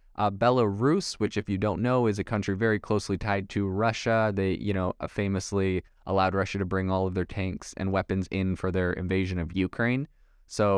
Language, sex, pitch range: English, male, 95-115 Hz